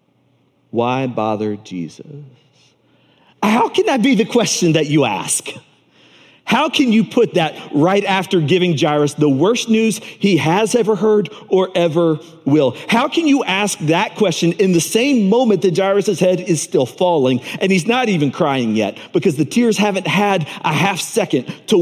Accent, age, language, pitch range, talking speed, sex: American, 40-59, English, 120-175 Hz, 170 wpm, male